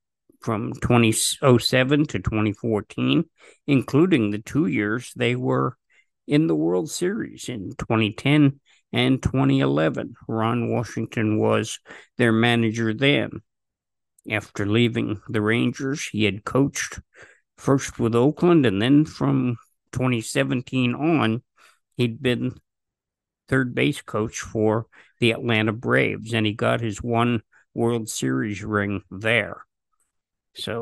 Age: 50-69